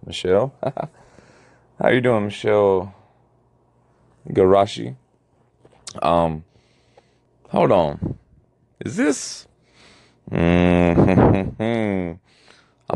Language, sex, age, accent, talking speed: English, male, 30-49, American, 60 wpm